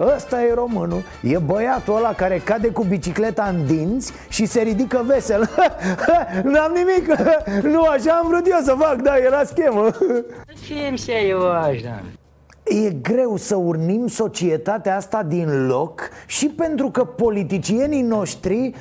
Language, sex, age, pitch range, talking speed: Romanian, male, 30-49, 165-245 Hz, 135 wpm